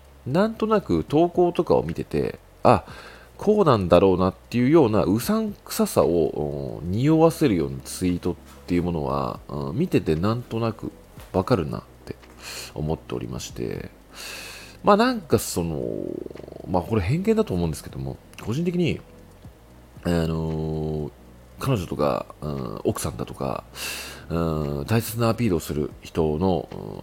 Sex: male